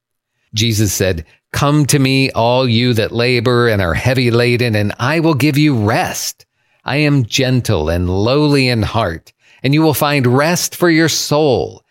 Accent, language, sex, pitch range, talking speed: American, English, male, 110-140 Hz, 170 wpm